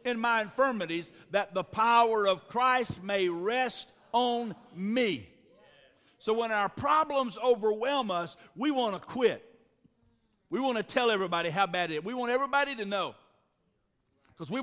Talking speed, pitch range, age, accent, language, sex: 155 wpm, 195-260 Hz, 60-79, American, English, male